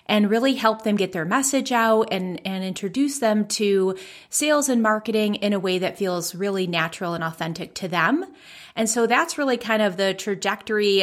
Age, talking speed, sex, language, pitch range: 30-49, 190 wpm, female, English, 185-230 Hz